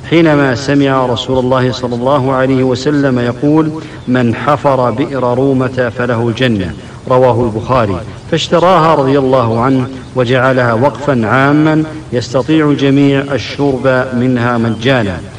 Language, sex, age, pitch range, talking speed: English, male, 50-69, 120-140 Hz, 115 wpm